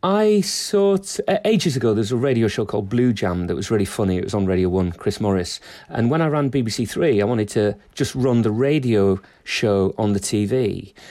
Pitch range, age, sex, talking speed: 105-135 Hz, 40-59, male, 220 wpm